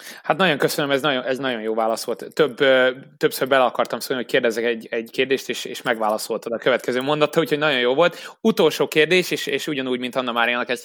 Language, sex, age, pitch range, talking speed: Hungarian, male, 20-39, 125-155 Hz, 215 wpm